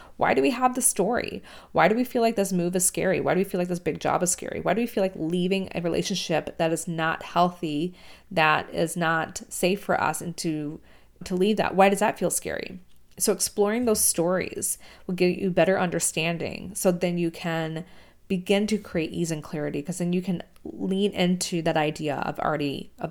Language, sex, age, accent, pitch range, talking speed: English, female, 20-39, American, 165-205 Hz, 215 wpm